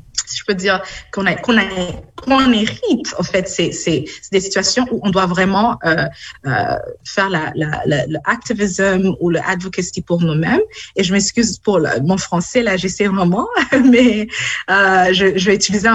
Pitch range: 175-220 Hz